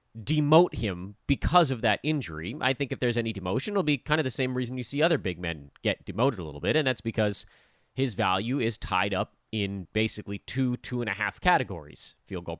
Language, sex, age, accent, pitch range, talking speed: English, male, 30-49, American, 100-155 Hz, 225 wpm